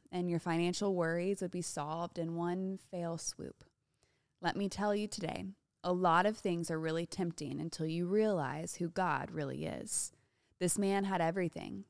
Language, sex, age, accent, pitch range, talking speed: English, female, 20-39, American, 160-195 Hz, 170 wpm